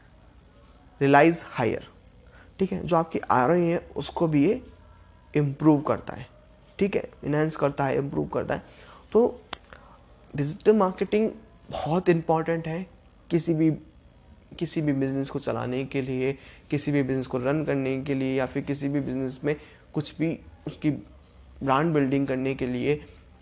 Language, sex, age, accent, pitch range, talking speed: Hindi, male, 20-39, native, 125-155 Hz, 155 wpm